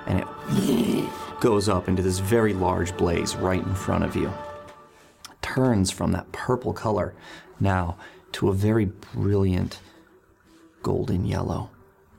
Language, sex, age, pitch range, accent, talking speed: English, male, 30-49, 85-105 Hz, American, 130 wpm